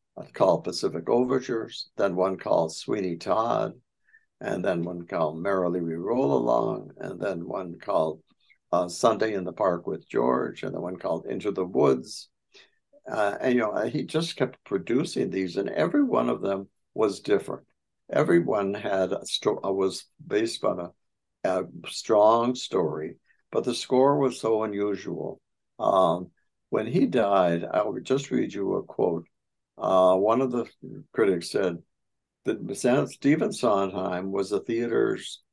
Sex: male